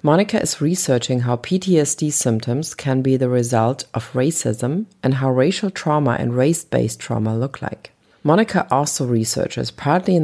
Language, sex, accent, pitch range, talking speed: English, female, German, 120-145 Hz, 150 wpm